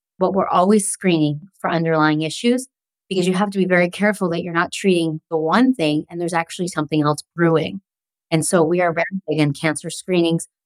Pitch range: 160-195 Hz